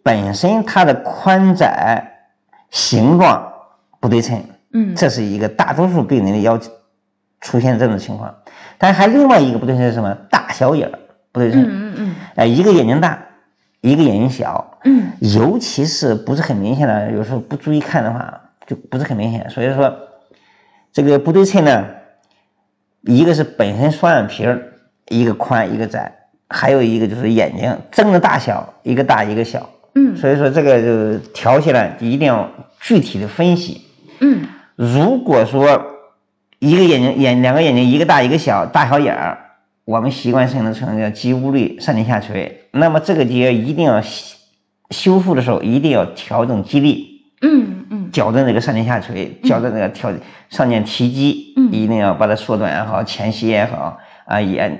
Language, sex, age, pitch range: Chinese, male, 50-69, 110-155 Hz